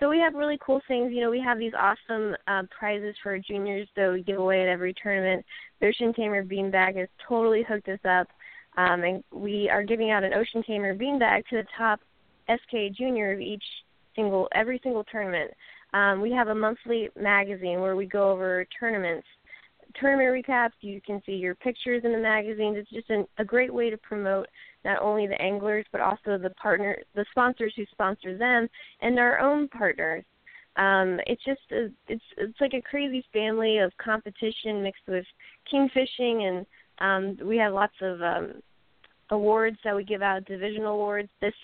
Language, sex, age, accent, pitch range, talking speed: English, female, 10-29, American, 195-230 Hz, 185 wpm